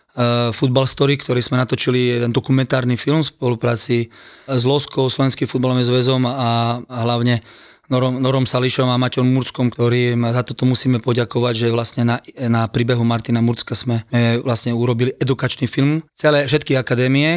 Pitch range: 120-135 Hz